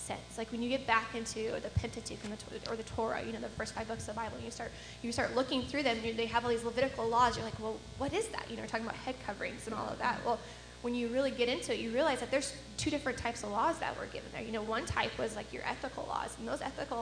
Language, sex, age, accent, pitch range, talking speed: English, female, 10-29, American, 220-265 Hz, 310 wpm